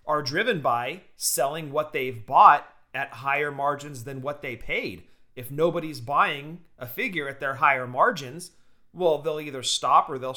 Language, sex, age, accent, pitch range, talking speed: English, male, 40-59, American, 130-160 Hz, 170 wpm